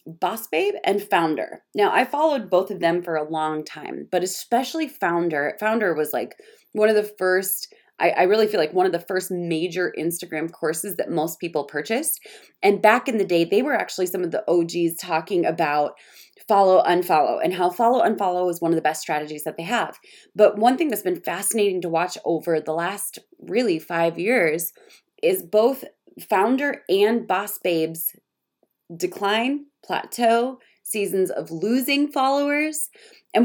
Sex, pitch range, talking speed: female, 170-250 Hz, 170 wpm